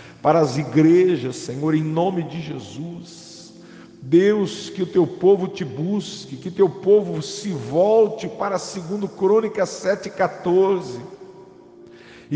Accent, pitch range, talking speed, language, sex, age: Brazilian, 130-190 Hz, 115 wpm, English, male, 50-69